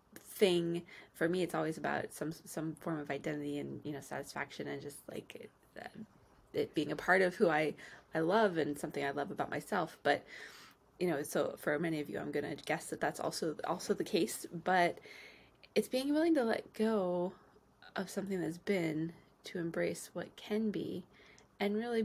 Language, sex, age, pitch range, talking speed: English, female, 20-39, 150-205 Hz, 190 wpm